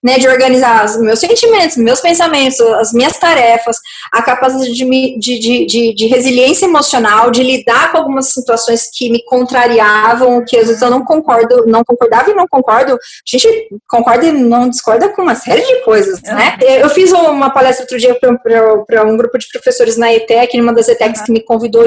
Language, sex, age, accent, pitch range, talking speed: Portuguese, female, 20-39, Brazilian, 240-330 Hz, 190 wpm